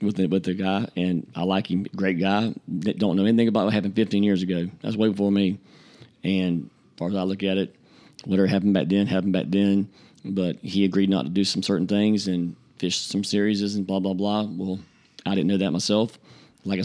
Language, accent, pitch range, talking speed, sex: English, American, 95-105 Hz, 225 wpm, male